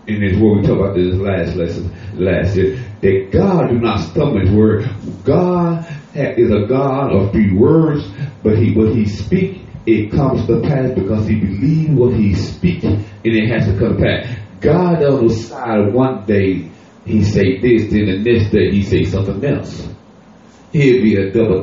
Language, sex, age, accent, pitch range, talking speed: English, male, 30-49, American, 100-135 Hz, 190 wpm